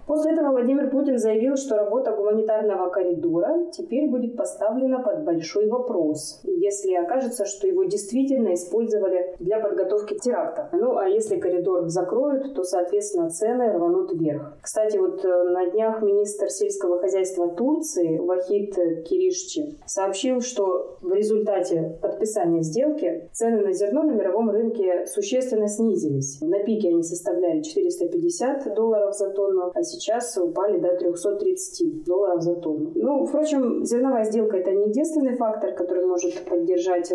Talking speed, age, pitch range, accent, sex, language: 140 wpm, 20-39, 180-280 Hz, native, female, Russian